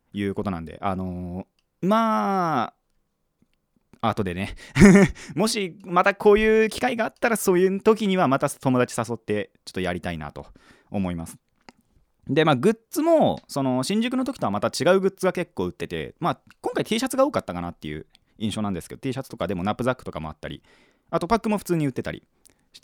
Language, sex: Japanese, male